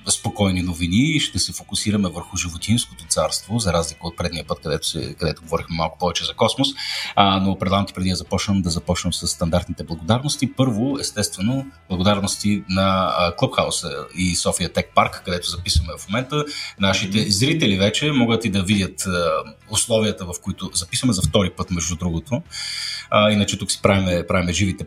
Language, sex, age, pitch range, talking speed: Bulgarian, male, 30-49, 95-120 Hz, 170 wpm